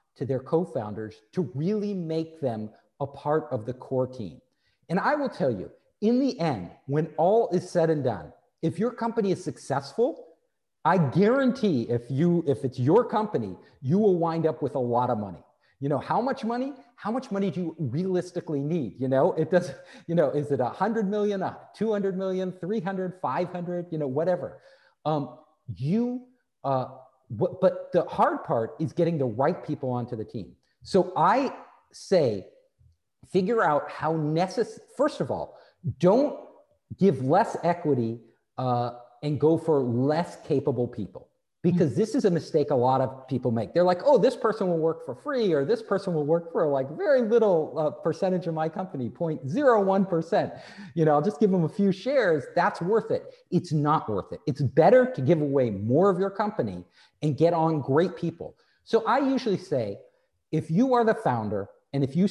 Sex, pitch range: male, 135-195 Hz